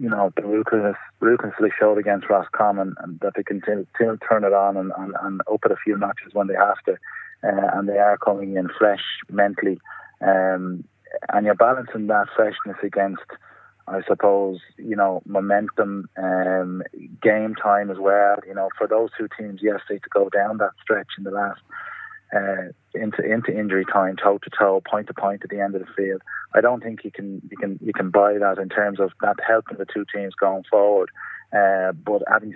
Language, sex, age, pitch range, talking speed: English, male, 20-39, 100-105 Hz, 205 wpm